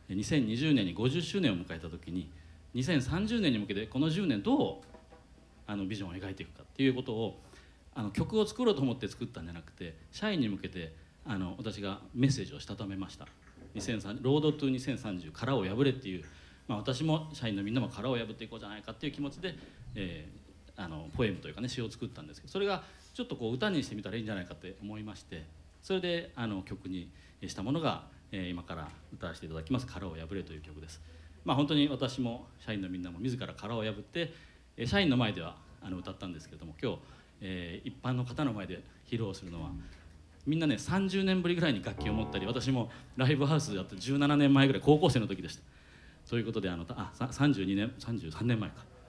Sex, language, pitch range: male, Japanese, 90-135 Hz